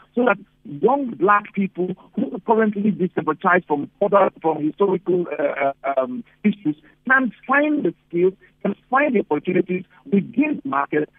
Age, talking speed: 50-69, 140 wpm